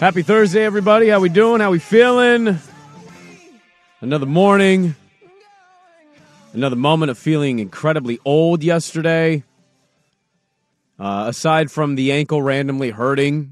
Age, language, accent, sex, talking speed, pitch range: 30-49, English, American, male, 110 wpm, 120-170 Hz